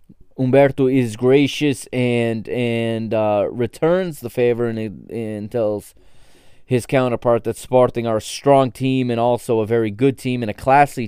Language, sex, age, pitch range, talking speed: English, male, 20-39, 110-140 Hz, 155 wpm